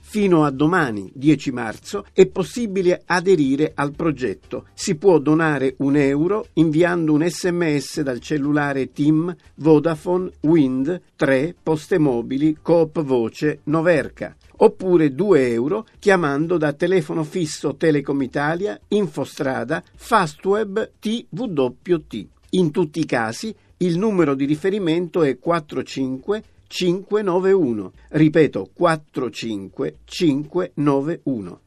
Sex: male